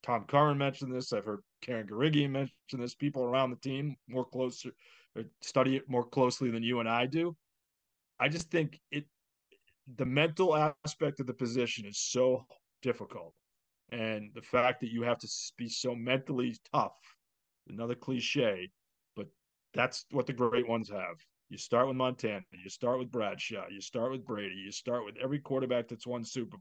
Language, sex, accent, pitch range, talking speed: English, male, American, 120-145 Hz, 180 wpm